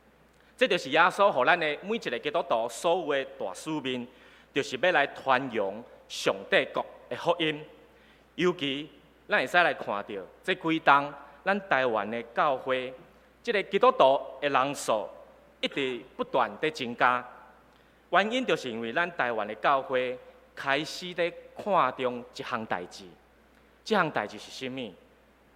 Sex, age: male, 30-49